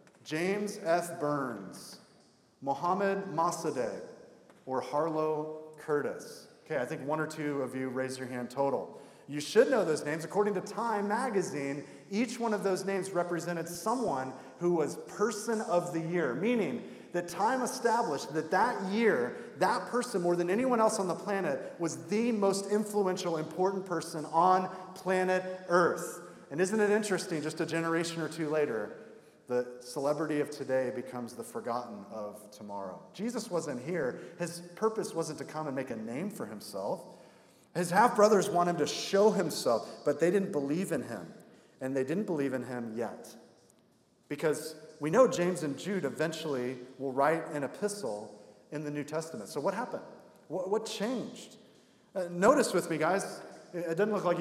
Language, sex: English, male